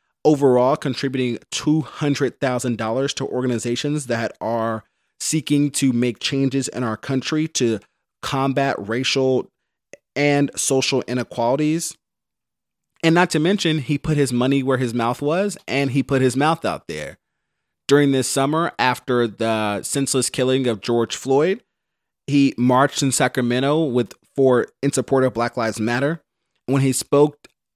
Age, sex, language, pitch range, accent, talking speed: 30-49, male, English, 115-140 Hz, American, 140 wpm